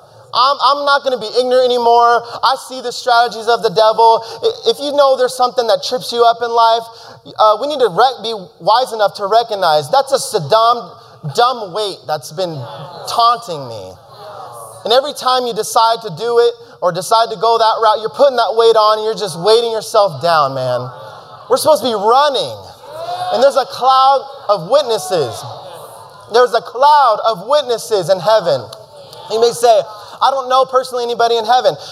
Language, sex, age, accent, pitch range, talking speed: English, male, 30-49, American, 230-300 Hz, 185 wpm